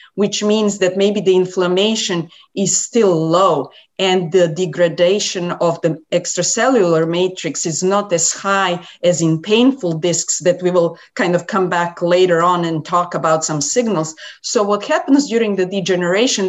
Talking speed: 160 wpm